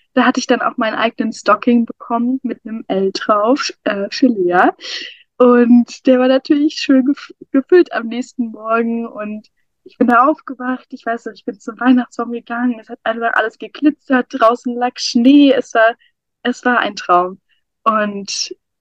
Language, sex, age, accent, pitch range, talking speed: German, female, 20-39, German, 220-255 Hz, 170 wpm